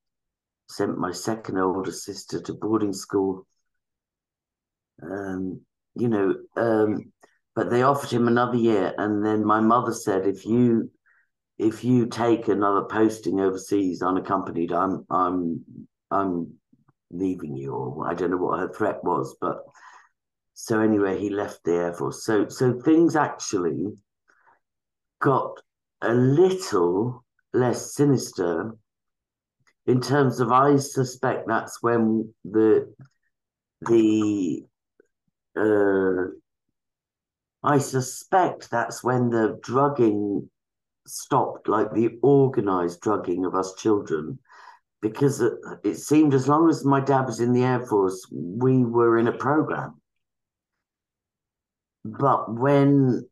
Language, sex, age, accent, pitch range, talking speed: English, male, 50-69, British, 100-130 Hz, 120 wpm